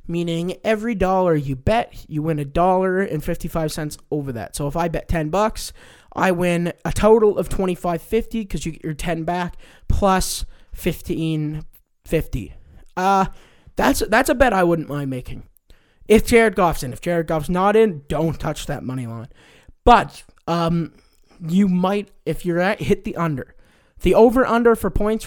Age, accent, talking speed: 20-39, American, 175 wpm